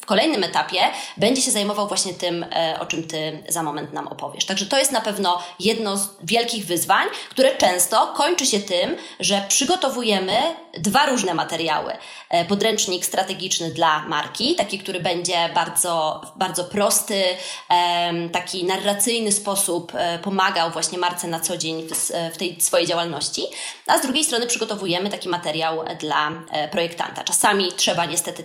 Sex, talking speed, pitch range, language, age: female, 145 wpm, 170-210 Hz, Polish, 20-39